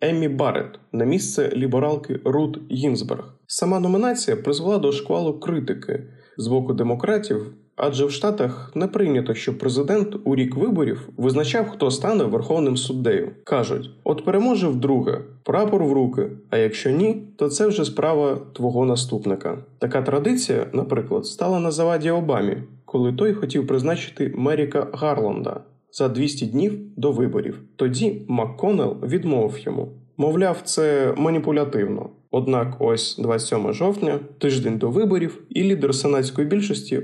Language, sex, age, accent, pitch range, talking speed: Ukrainian, male, 20-39, native, 130-180 Hz, 135 wpm